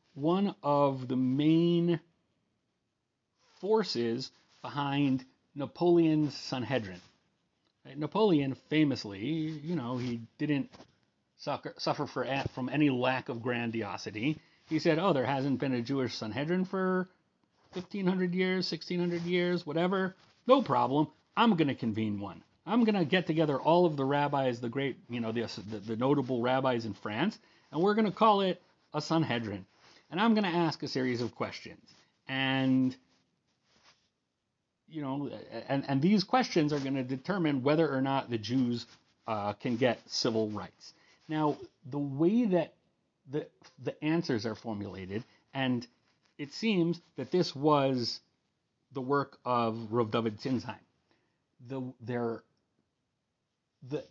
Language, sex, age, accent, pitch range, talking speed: English, male, 40-59, American, 125-165 Hz, 140 wpm